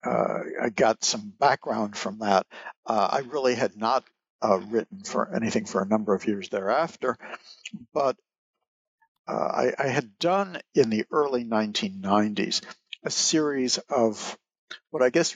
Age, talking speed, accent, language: 60-79, 150 wpm, American, English